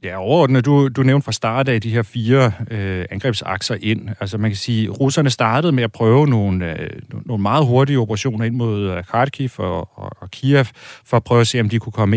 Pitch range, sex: 105-120 Hz, male